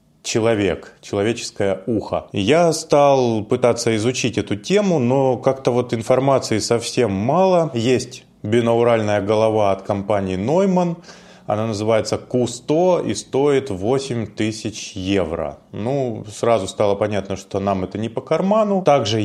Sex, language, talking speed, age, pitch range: male, Russian, 125 wpm, 20-39, 105-140 Hz